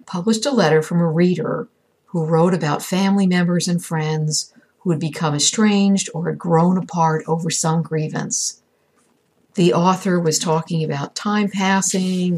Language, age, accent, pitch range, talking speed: English, 60-79, American, 160-210 Hz, 150 wpm